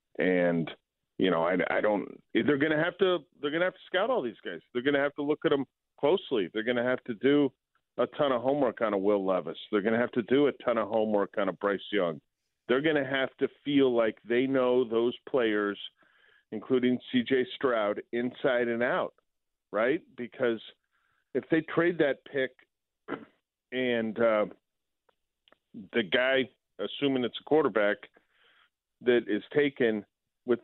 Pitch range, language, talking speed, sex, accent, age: 100-130 Hz, English, 180 wpm, male, American, 40-59